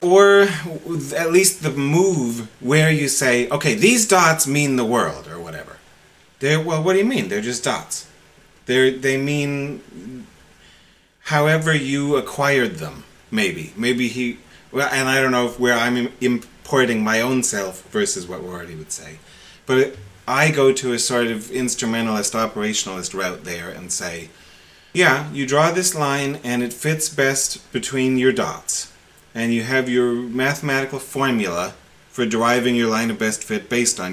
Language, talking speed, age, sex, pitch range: English, 165 wpm, 30-49, male, 115-150 Hz